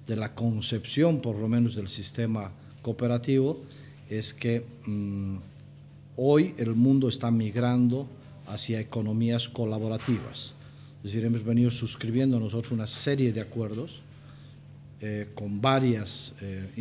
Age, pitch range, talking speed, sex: 40-59, 110-135 Hz, 120 wpm, male